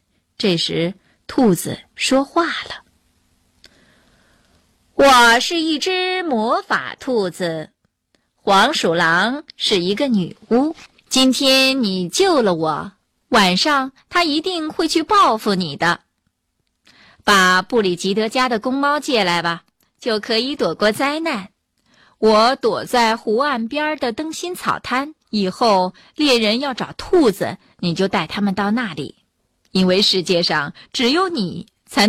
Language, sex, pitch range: Chinese, female, 195-280 Hz